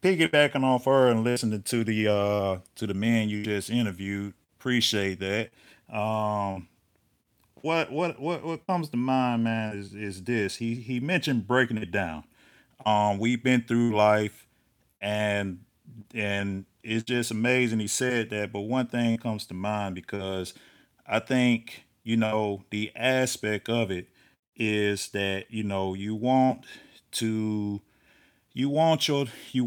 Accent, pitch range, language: American, 100-125 Hz, English